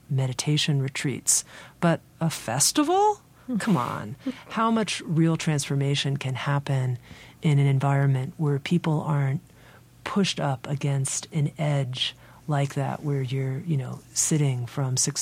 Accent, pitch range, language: American, 140-175 Hz, English